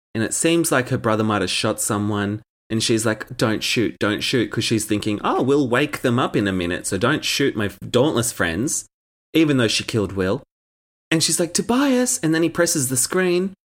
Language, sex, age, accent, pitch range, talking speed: English, male, 30-49, Australian, 105-150 Hz, 210 wpm